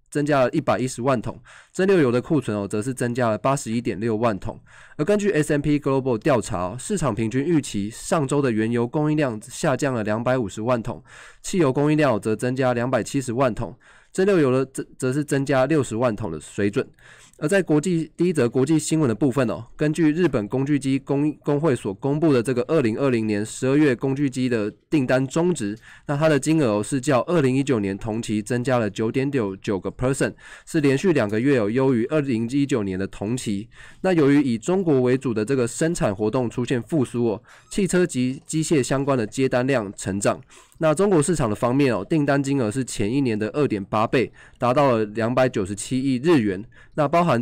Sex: male